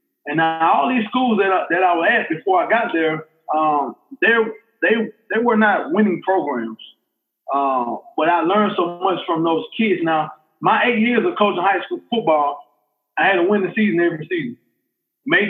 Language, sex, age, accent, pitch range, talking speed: English, male, 20-39, American, 155-225 Hz, 195 wpm